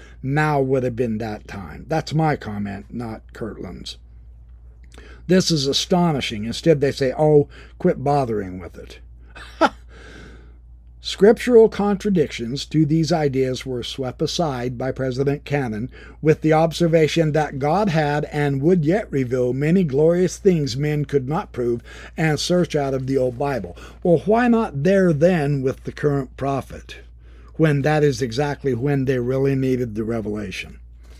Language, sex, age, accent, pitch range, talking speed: English, male, 60-79, American, 115-165 Hz, 145 wpm